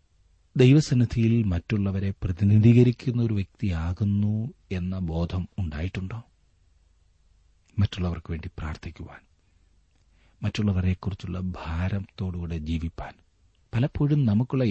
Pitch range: 80-100 Hz